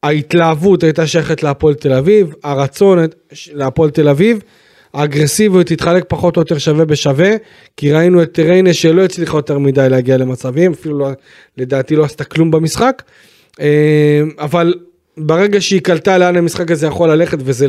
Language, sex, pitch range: Hebrew, male, 140-175 Hz